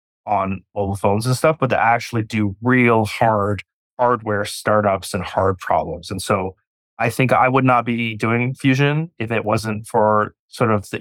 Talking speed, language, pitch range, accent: 180 wpm, English, 105-130 Hz, American